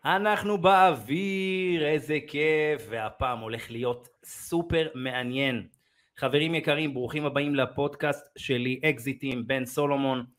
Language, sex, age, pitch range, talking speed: Hebrew, male, 30-49, 115-150 Hz, 105 wpm